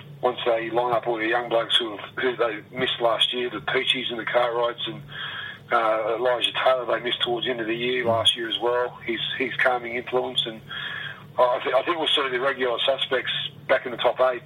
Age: 40-59